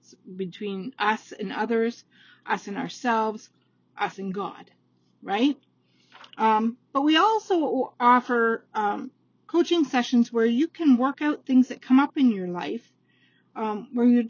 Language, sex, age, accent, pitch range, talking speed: English, female, 40-59, American, 200-275 Hz, 145 wpm